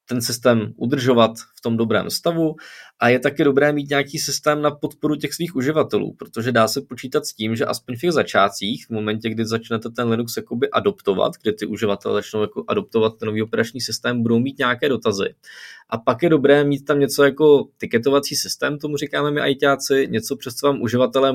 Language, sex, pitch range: Czech, male, 110-140 Hz